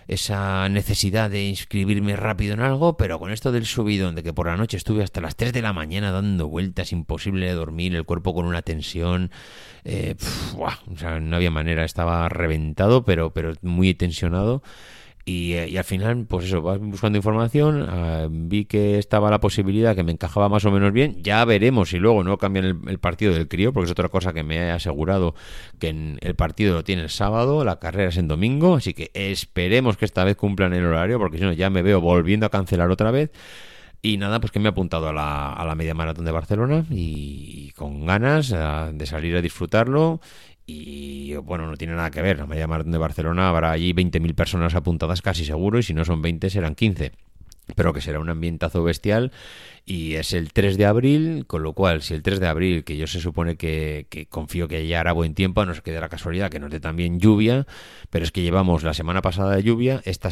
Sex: male